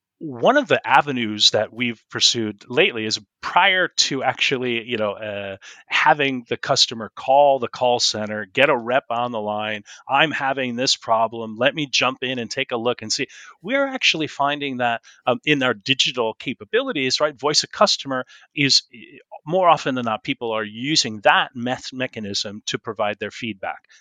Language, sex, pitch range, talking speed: English, male, 110-140 Hz, 175 wpm